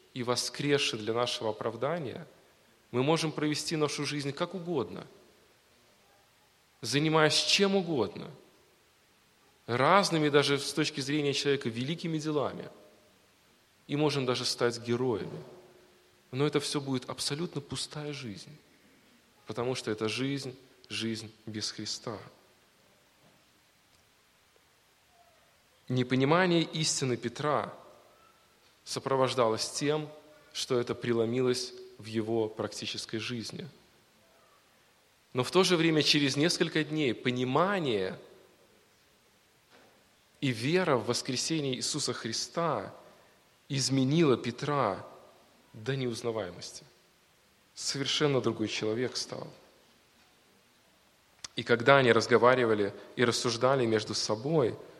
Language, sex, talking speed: Russian, male, 95 wpm